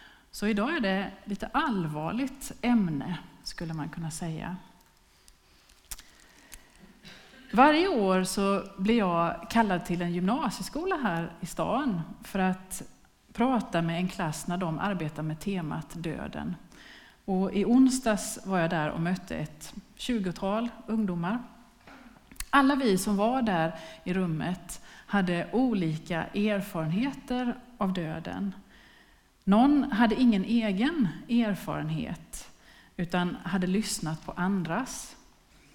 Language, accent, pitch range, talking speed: Swedish, native, 175-235 Hz, 115 wpm